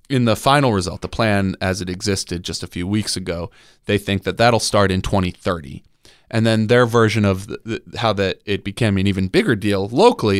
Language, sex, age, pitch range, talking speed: English, male, 30-49, 95-115 Hz, 200 wpm